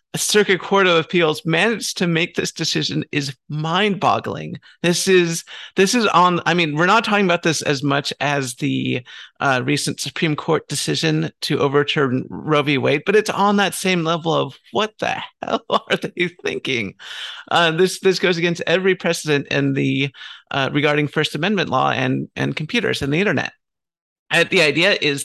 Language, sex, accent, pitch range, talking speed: English, male, American, 140-185 Hz, 175 wpm